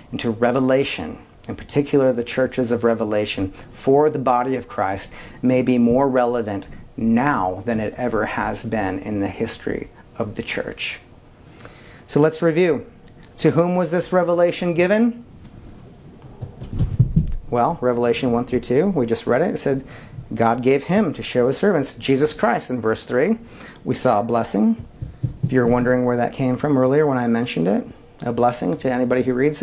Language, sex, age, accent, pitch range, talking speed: English, male, 40-59, American, 110-135 Hz, 170 wpm